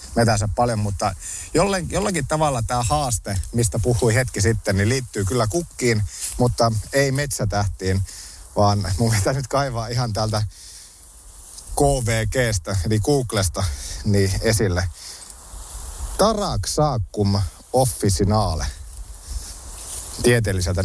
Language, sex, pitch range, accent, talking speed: Finnish, male, 90-115 Hz, native, 100 wpm